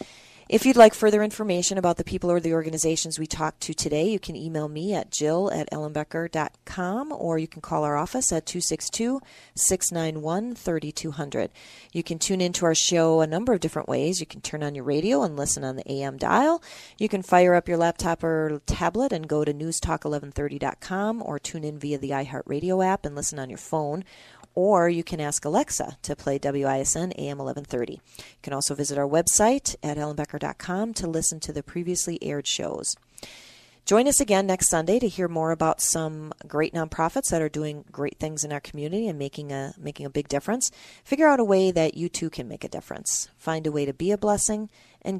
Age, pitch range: 40-59, 150-185 Hz